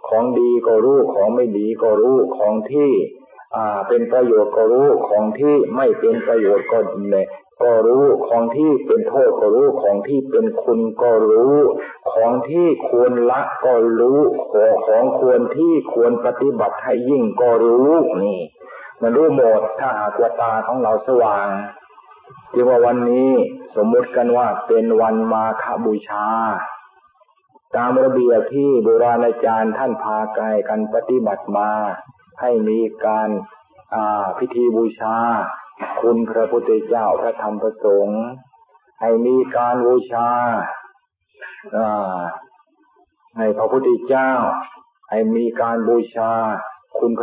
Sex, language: male, Thai